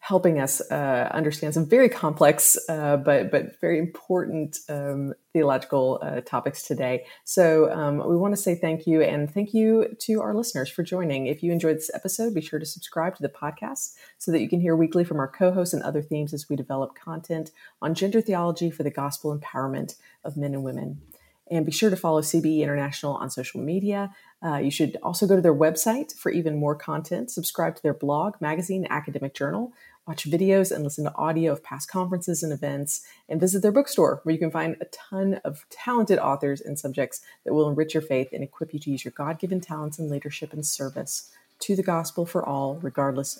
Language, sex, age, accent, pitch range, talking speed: English, female, 30-49, American, 145-180 Hz, 205 wpm